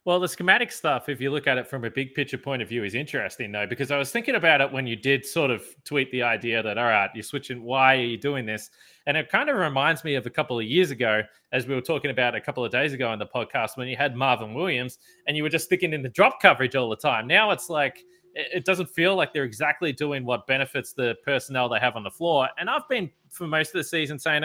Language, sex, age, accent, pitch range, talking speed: English, male, 20-39, Australian, 120-155 Hz, 275 wpm